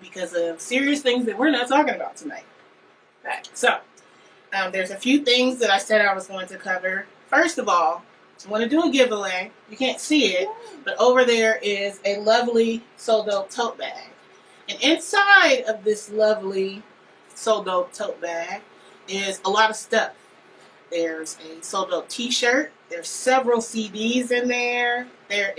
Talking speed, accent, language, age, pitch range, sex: 170 wpm, American, English, 30-49, 195-255 Hz, female